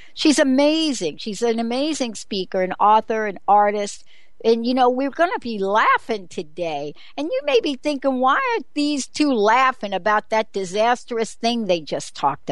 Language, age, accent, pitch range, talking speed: English, 60-79, American, 185-255 Hz, 175 wpm